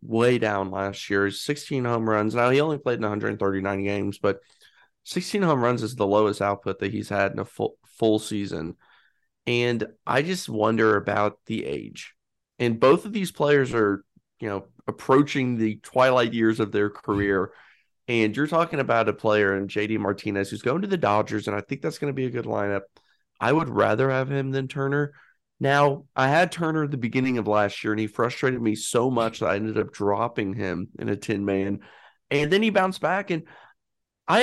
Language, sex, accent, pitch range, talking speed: English, male, American, 105-145 Hz, 200 wpm